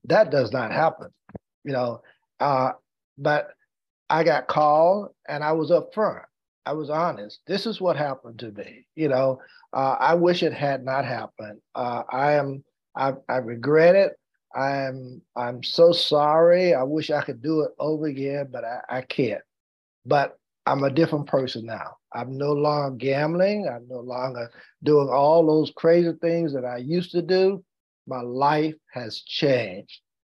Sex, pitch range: male, 135-175 Hz